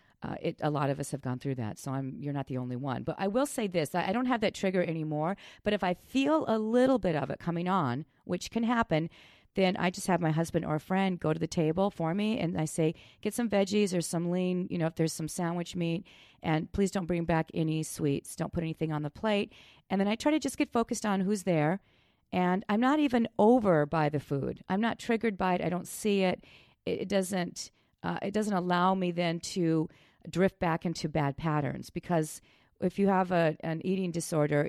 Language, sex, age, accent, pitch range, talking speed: English, female, 40-59, American, 155-200 Hz, 235 wpm